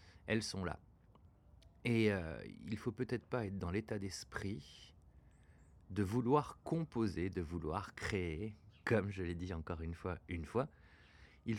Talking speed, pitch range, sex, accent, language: 155 wpm, 85-110 Hz, male, French, French